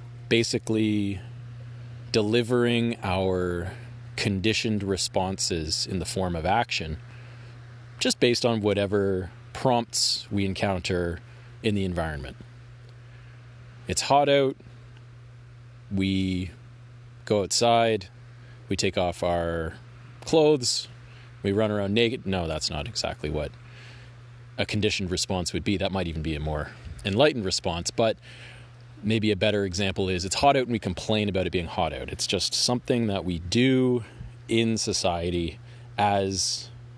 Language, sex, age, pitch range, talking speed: English, male, 30-49, 95-120 Hz, 130 wpm